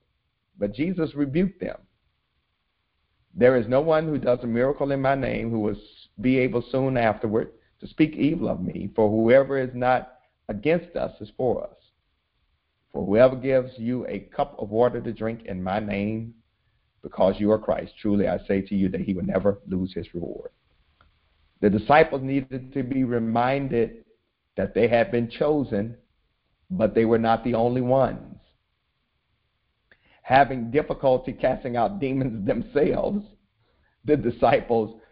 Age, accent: 50-69, American